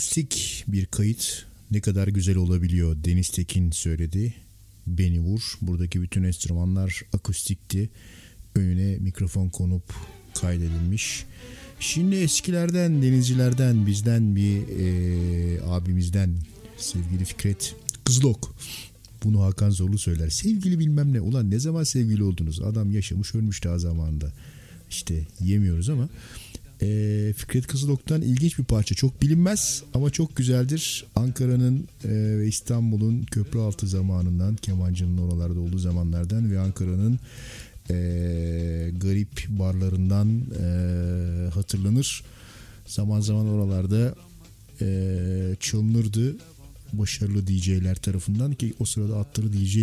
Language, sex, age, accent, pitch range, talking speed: Turkish, male, 50-69, native, 90-120 Hz, 105 wpm